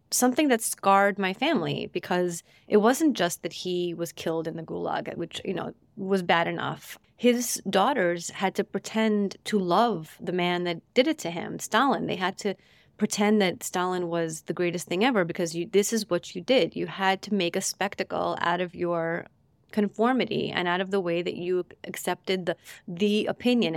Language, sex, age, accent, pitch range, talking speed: English, female, 30-49, American, 175-210 Hz, 190 wpm